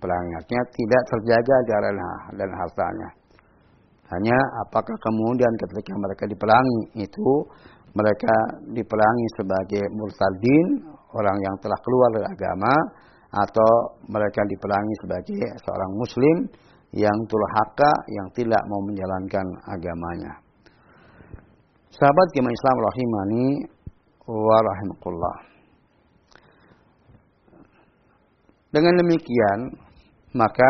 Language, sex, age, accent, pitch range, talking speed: Indonesian, male, 50-69, native, 100-125 Hz, 85 wpm